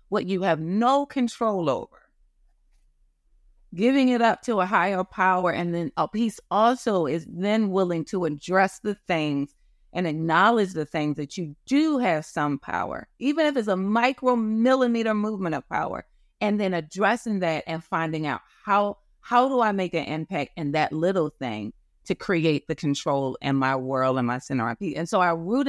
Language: English